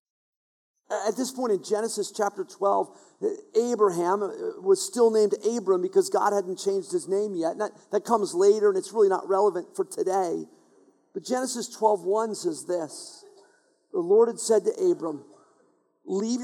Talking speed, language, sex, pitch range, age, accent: 155 wpm, English, male, 200-305 Hz, 50-69, American